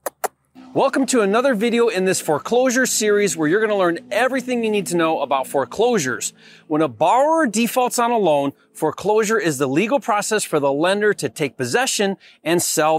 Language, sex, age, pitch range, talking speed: English, male, 30-49, 155-225 Hz, 180 wpm